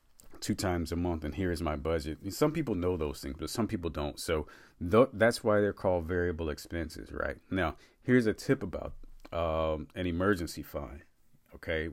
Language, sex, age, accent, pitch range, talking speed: English, male, 40-59, American, 85-115 Hz, 180 wpm